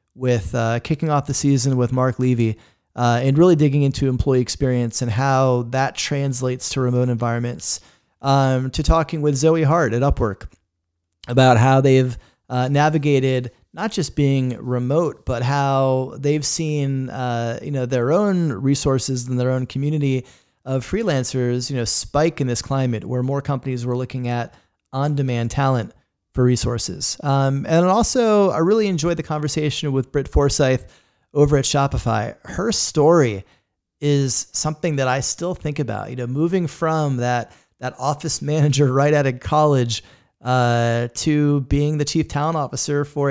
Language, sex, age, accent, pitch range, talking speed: English, male, 30-49, American, 125-150 Hz, 160 wpm